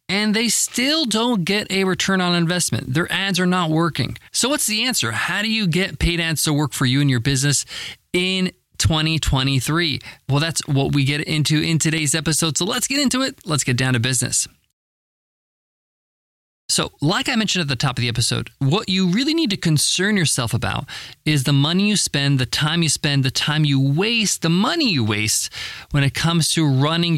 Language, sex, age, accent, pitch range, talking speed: English, male, 20-39, American, 135-180 Hz, 205 wpm